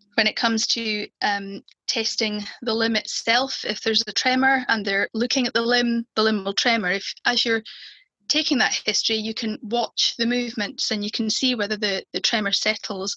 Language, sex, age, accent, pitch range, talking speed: English, female, 10-29, British, 210-245 Hz, 195 wpm